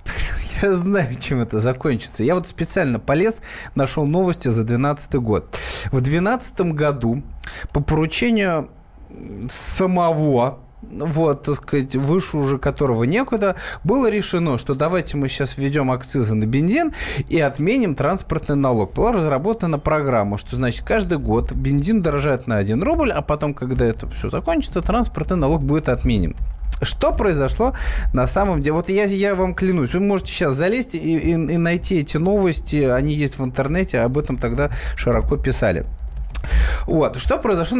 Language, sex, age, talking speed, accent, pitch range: Russian, male, 20-39, 150 wpm, native, 125-180 Hz